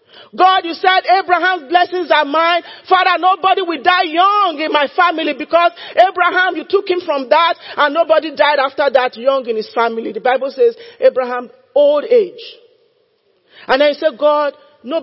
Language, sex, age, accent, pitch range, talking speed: English, male, 40-59, Nigerian, 260-370 Hz, 170 wpm